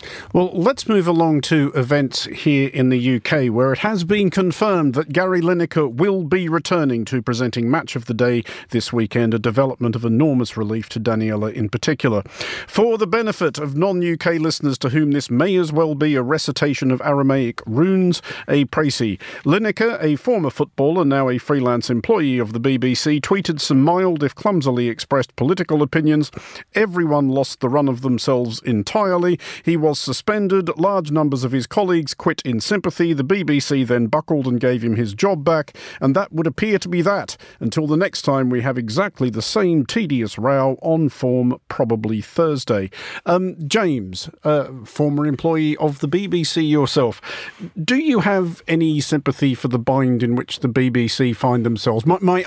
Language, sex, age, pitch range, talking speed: English, male, 50-69, 125-170 Hz, 175 wpm